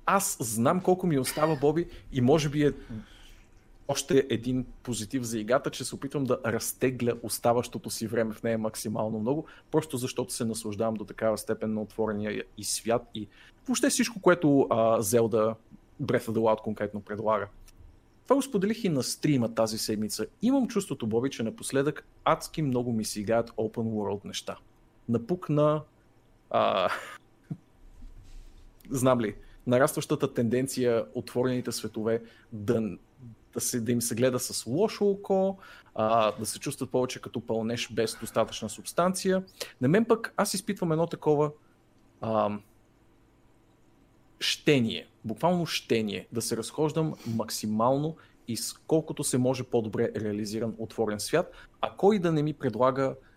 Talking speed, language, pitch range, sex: 145 wpm, Bulgarian, 110-150 Hz, male